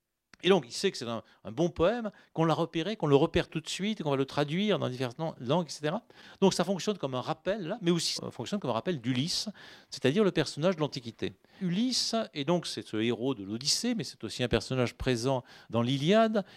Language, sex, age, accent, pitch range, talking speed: French, male, 40-59, French, 145-205 Hz, 230 wpm